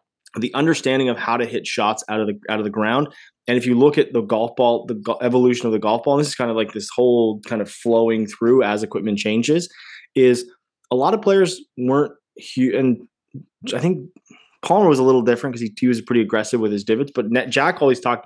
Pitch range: 110-130 Hz